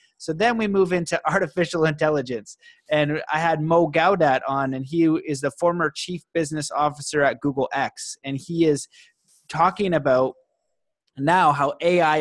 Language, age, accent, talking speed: English, 30-49, American, 155 wpm